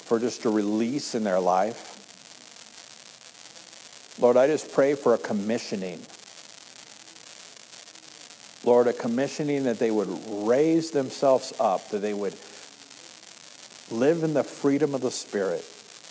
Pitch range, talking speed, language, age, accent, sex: 110-130 Hz, 125 wpm, English, 50-69, American, male